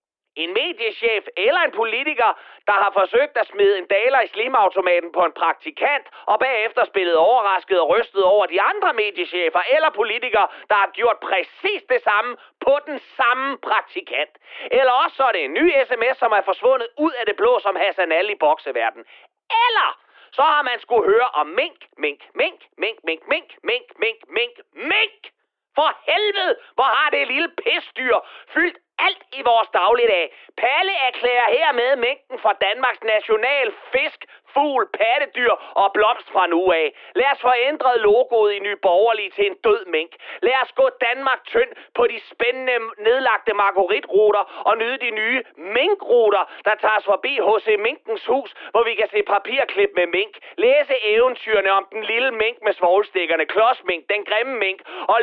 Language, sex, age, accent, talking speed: Danish, male, 30-49, native, 170 wpm